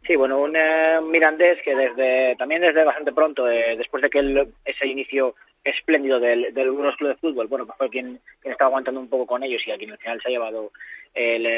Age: 20-39